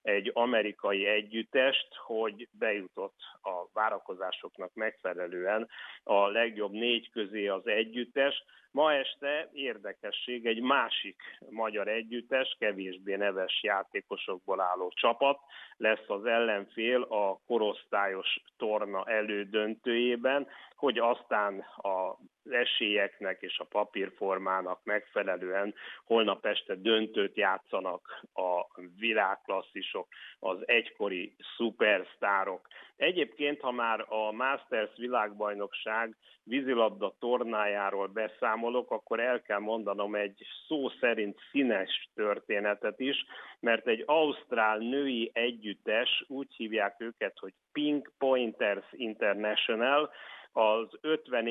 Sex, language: male, Hungarian